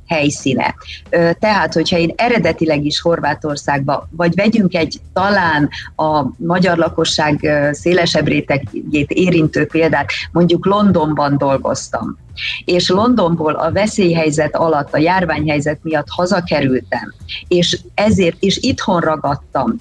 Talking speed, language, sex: 105 wpm, Hungarian, female